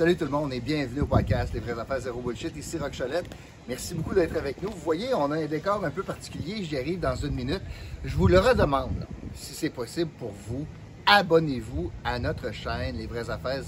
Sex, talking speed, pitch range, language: male, 230 wpm, 105-165 Hz, French